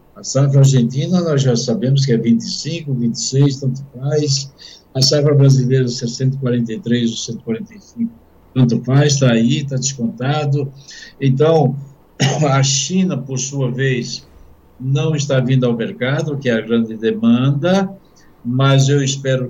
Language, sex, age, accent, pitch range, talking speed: Portuguese, male, 60-79, Brazilian, 120-140 Hz, 130 wpm